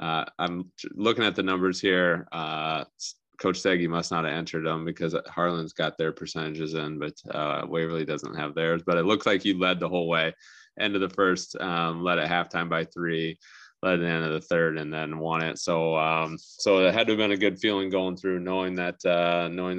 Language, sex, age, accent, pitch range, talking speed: English, male, 20-39, American, 85-95 Hz, 220 wpm